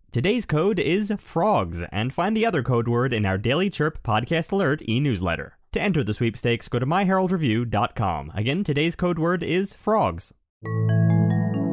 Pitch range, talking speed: 120-180 Hz, 155 wpm